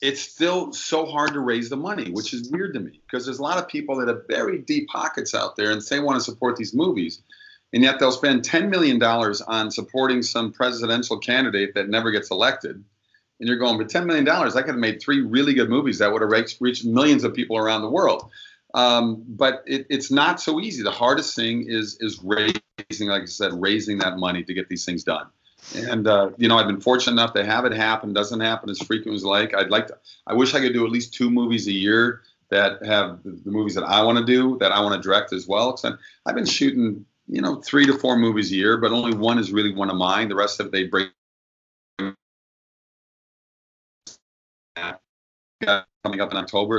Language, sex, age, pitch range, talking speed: English, male, 40-59, 100-125 Hz, 225 wpm